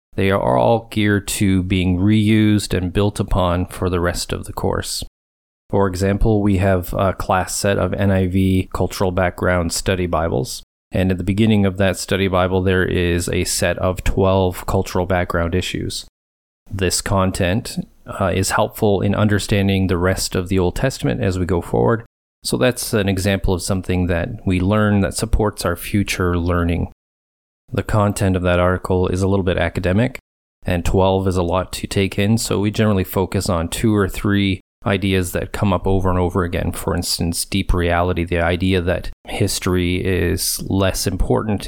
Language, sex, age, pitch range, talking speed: English, male, 30-49, 90-100 Hz, 175 wpm